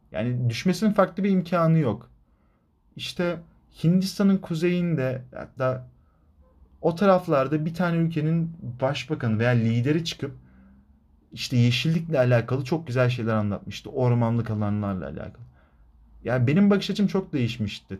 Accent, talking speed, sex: native, 115 wpm, male